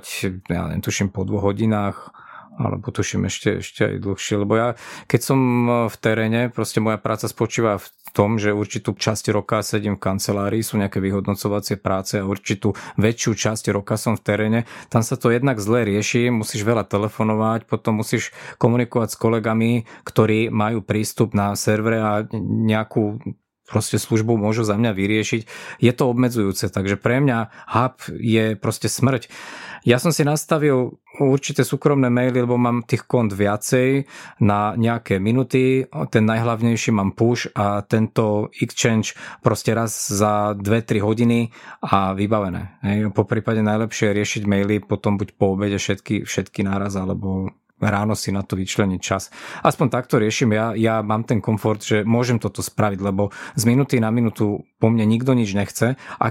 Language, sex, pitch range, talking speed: Slovak, male, 100-120 Hz, 160 wpm